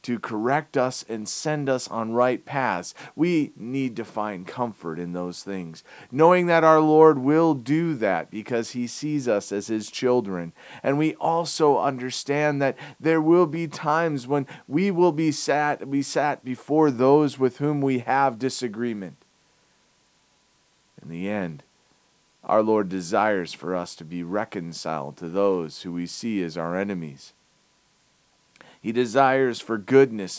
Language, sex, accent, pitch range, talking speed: English, male, American, 100-135 Hz, 150 wpm